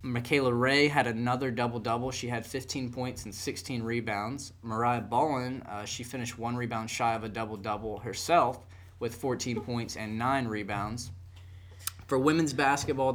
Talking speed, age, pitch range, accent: 150 wpm, 20-39, 110-130 Hz, American